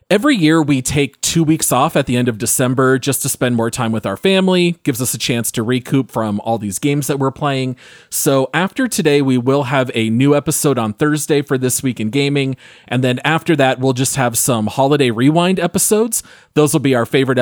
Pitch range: 120-160 Hz